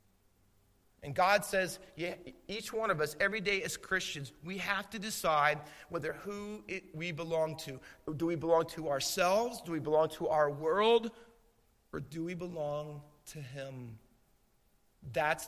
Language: English